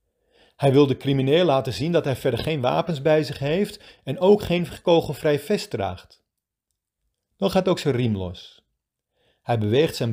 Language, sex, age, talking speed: Dutch, male, 40-59, 170 wpm